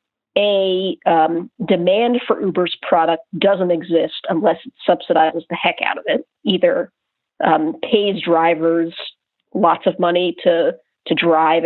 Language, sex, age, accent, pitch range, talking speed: English, female, 40-59, American, 165-210 Hz, 135 wpm